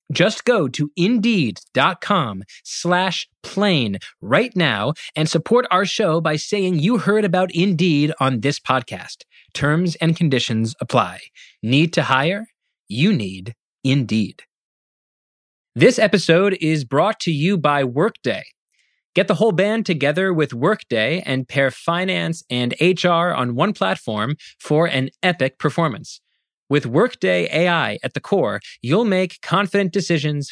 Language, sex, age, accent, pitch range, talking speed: English, male, 30-49, American, 135-185 Hz, 135 wpm